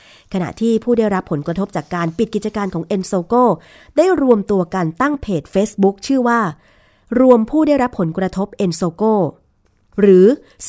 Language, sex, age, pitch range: Thai, female, 20-39, 170-225 Hz